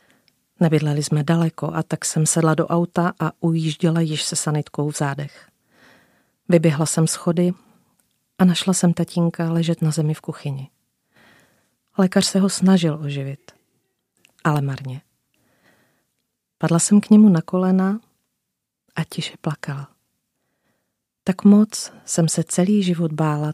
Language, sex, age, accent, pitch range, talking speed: Czech, female, 40-59, native, 150-180 Hz, 130 wpm